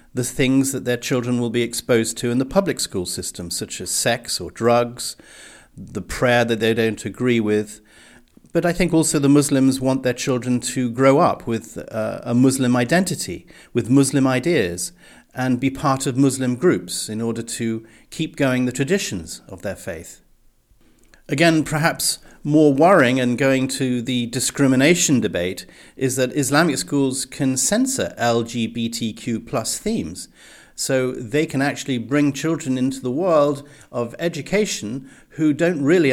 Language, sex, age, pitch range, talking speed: English, male, 50-69, 120-145 Hz, 155 wpm